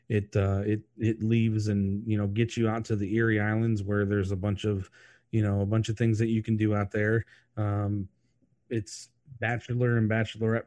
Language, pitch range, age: English, 100-115 Hz, 30-49